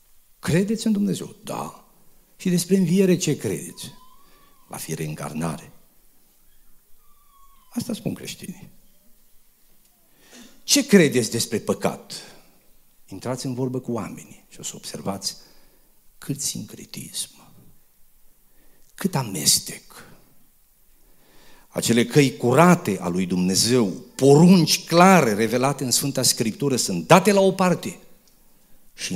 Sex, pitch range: male, 115-185 Hz